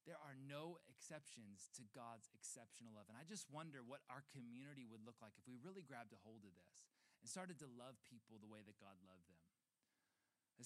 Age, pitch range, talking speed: 30-49, 120-165 Hz, 215 wpm